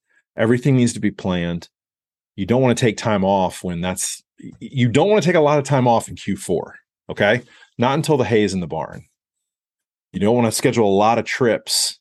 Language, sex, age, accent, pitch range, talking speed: English, male, 30-49, American, 90-120 Hz, 220 wpm